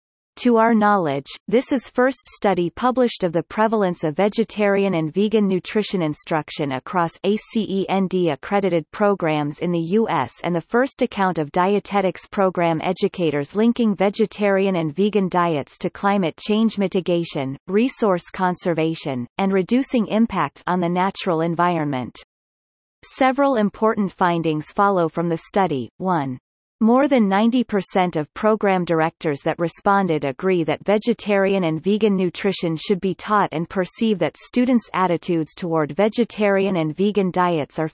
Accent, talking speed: American, 135 wpm